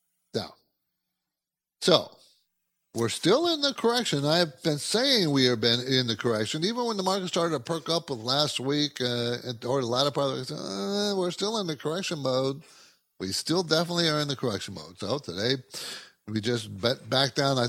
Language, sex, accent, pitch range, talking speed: English, male, American, 125-190 Hz, 190 wpm